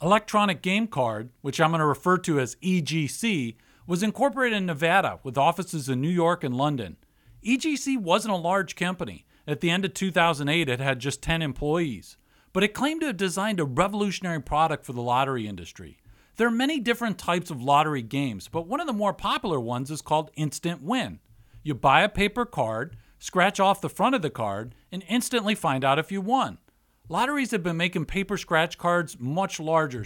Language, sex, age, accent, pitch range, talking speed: English, male, 40-59, American, 140-200 Hz, 195 wpm